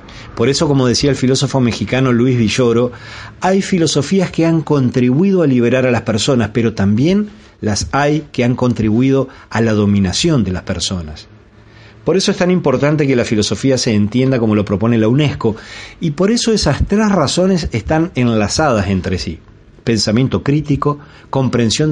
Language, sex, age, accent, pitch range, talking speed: Spanish, male, 40-59, Argentinian, 105-140 Hz, 165 wpm